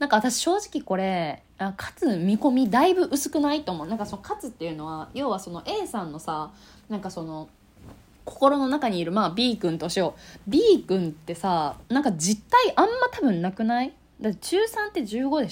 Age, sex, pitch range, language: 20-39, female, 170-275 Hz, Japanese